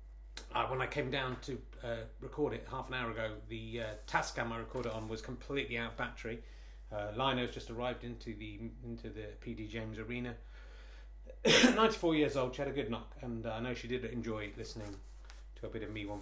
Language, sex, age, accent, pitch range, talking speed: English, male, 30-49, British, 115-145 Hz, 210 wpm